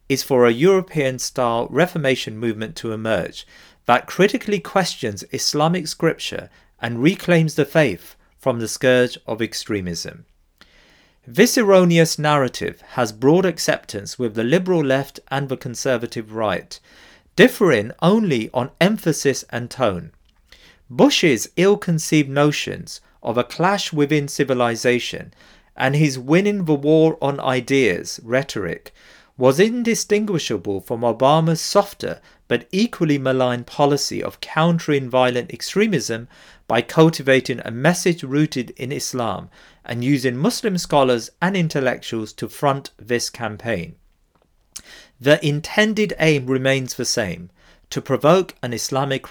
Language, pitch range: English, 120-165 Hz